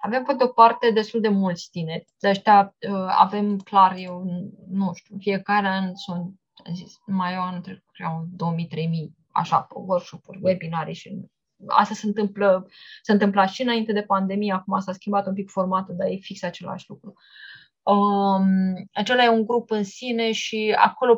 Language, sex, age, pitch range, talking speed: Romanian, female, 20-39, 185-215 Hz, 160 wpm